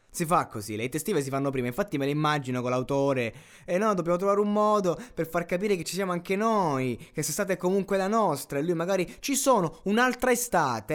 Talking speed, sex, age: 230 wpm, male, 20-39